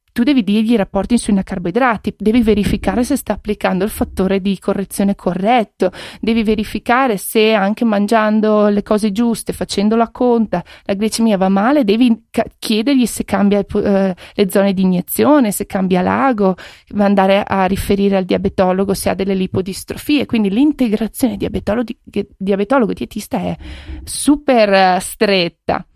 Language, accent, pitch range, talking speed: Italian, native, 195-235 Hz, 140 wpm